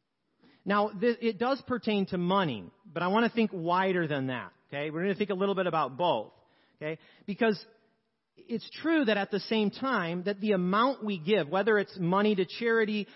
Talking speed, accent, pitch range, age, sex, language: 195 wpm, American, 135-200 Hz, 40-59, male, English